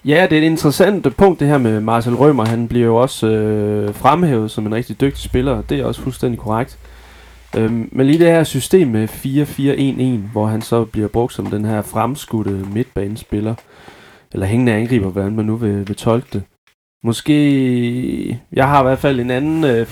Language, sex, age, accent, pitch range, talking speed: Danish, male, 30-49, native, 105-125 Hz, 200 wpm